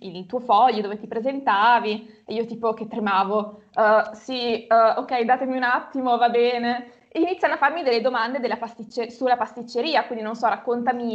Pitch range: 225-270 Hz